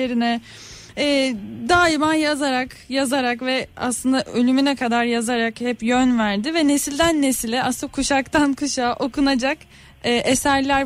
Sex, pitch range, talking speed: female, 225-280 Hz, 120 wpm